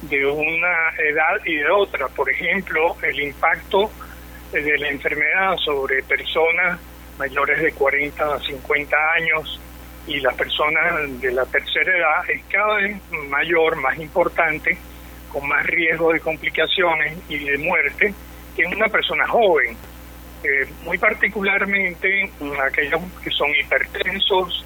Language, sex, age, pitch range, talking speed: Spanish, male, 60-79, 135-175 Hz, 135 wpm